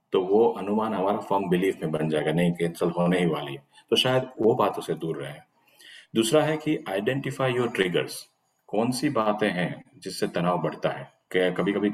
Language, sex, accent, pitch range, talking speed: Hindi, male, native, 85-100 Hz, 180 wpm